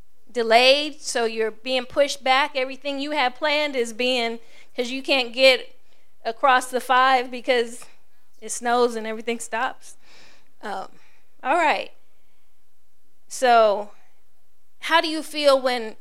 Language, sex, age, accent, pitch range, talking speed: English, female, 40-59, American, 235-285 Hz, 125 wpm